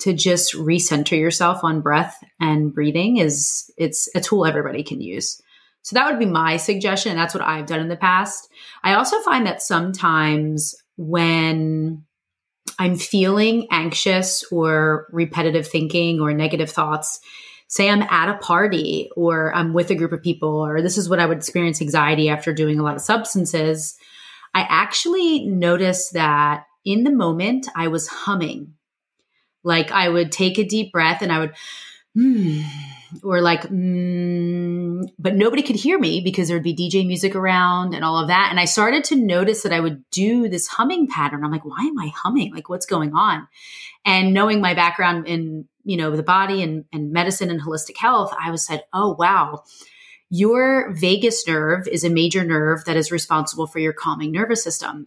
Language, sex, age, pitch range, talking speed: English, female, 30-49, 160-195 Hz, 180 wpm